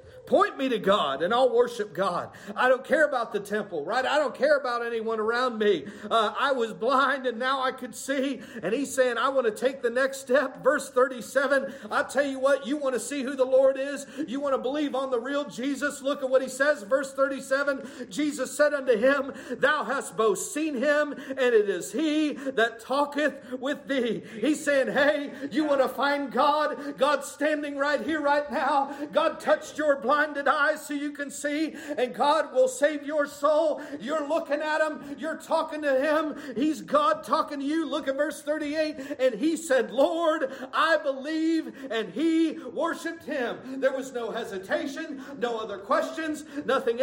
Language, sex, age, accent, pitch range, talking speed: English, male, 50-69, American, 255-300 Hz, 195 wpm